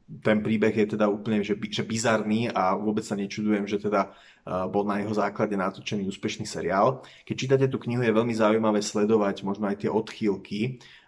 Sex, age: male, 30-49